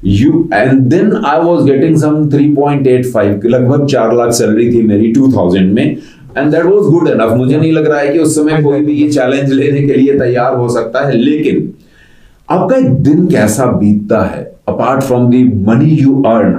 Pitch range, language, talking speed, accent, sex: 125-160 Hz, Hindi, 140 wpm, native, male